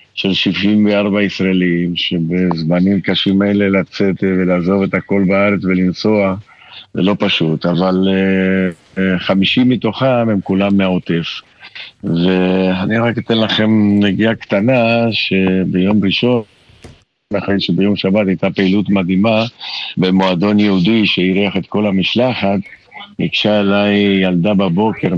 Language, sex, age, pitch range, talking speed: Hebrew, male, 50-69, 95-105 Hz, 115 wpm